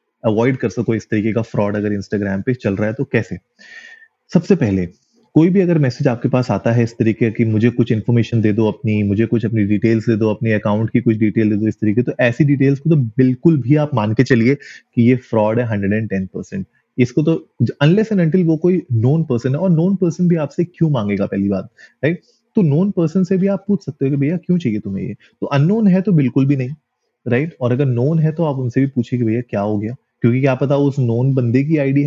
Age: 30-49